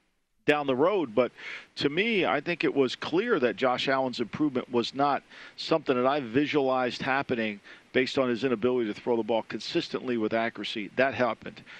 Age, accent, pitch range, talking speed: 50-69, American, 130-165 Hz, 180 wpm